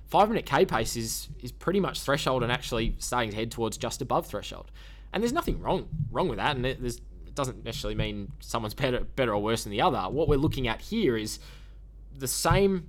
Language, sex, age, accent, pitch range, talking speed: English, male, 10-29, Australian, 110-140 Hz, 225 wpm